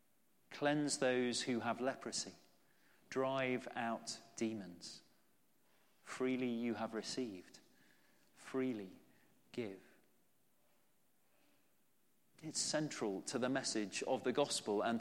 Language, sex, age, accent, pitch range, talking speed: English, male, 40-59, British, 115-145 Hz, 90 wpm